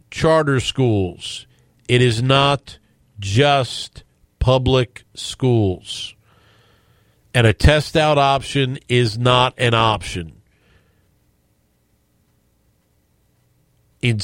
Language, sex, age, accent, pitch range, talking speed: English, male, 50-69, American, 105-130 Hz, 75 wpm